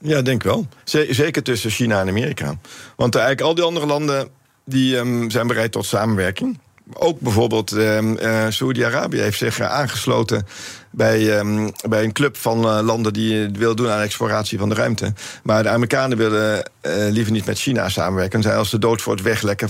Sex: male